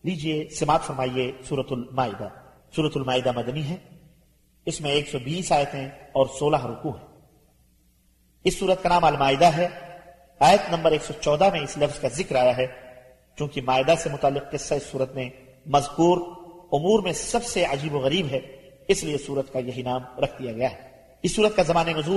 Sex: male